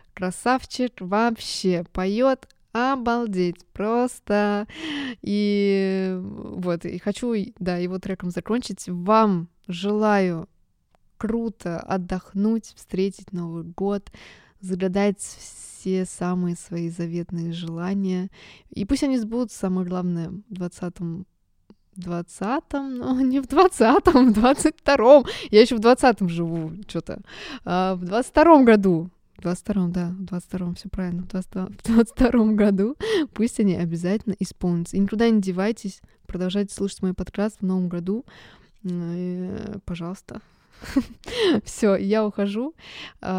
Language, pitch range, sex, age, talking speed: Russian, 180-225 Hz, female, 20-39, 115 wpm